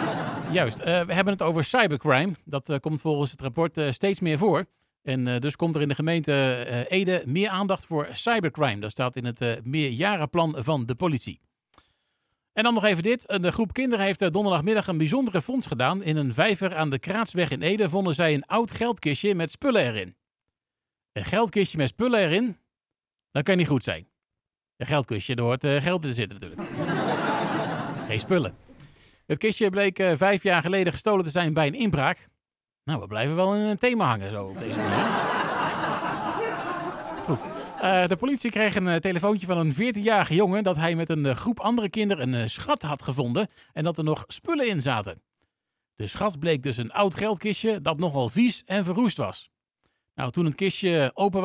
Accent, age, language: Dutch, 50-69, Dutch